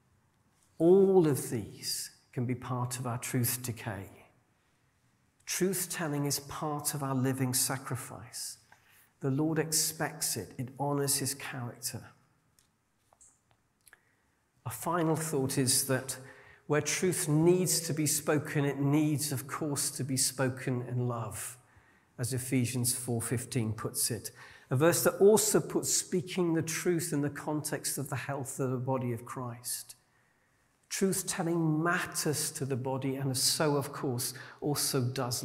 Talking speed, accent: 135 wpm, British